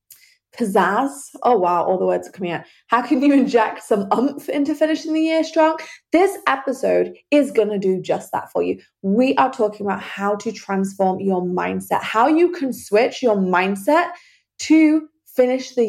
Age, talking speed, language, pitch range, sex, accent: 20-39, 180 wpm, English, 200-285 Hz, female, British